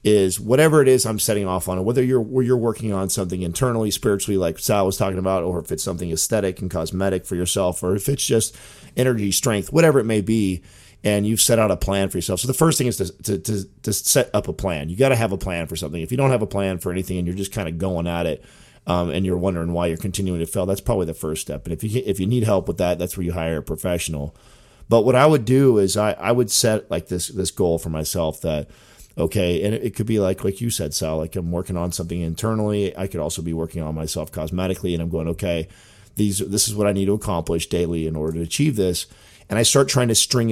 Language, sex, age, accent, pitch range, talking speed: English, male, 40-59, American, 90-115 Hz, 270 wpm